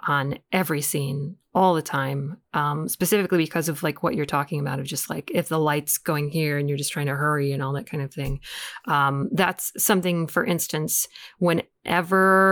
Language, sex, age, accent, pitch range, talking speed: English, female, 30-49, American, 150-185 Hz, 195 wpm